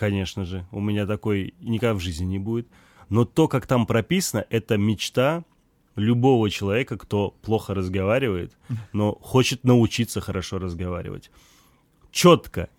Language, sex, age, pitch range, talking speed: Russian, male, 20-39, 100-125 Hz, 130 wpm